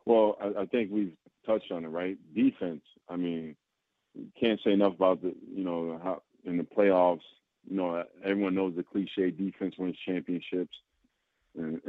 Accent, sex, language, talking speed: American, male, English, 165 wpm